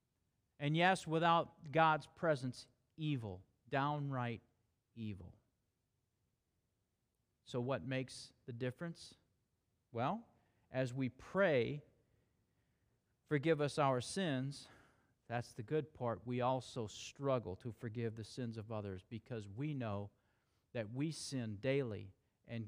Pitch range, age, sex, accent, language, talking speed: 110-135 Hz, 40-59, male, American, English, 110 wpm